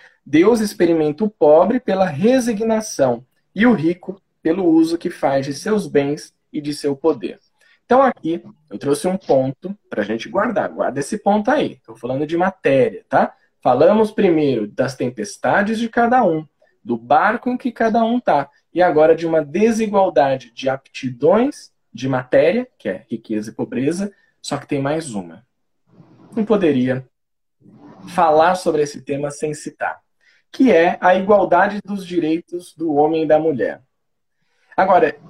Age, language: 20-39, Portuguese